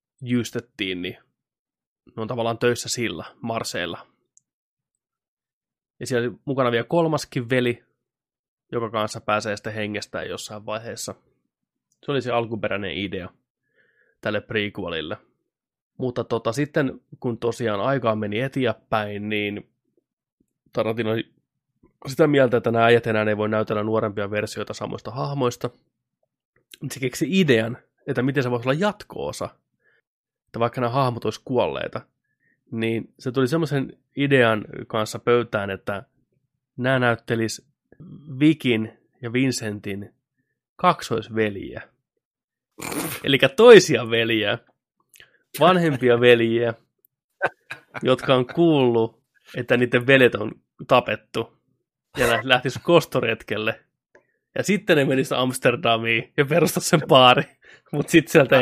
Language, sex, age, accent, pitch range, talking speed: Finnish, male, 20-39, native, 110-135 Hz, 110 wpm